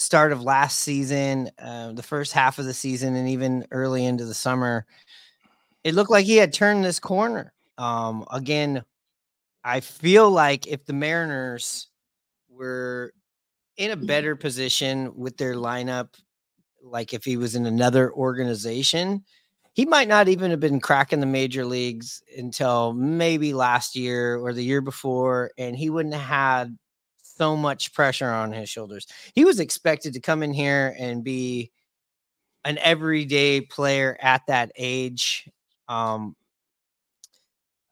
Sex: male